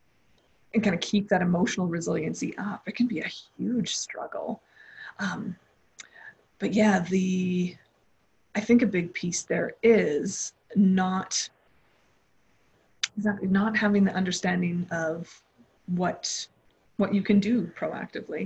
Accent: American